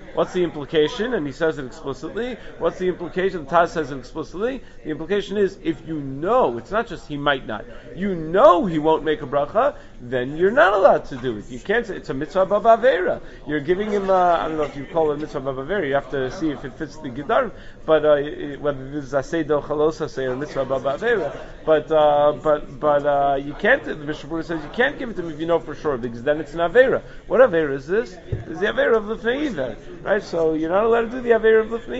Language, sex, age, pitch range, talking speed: English, male, 40-59, 145-195 Hz, 250 wpm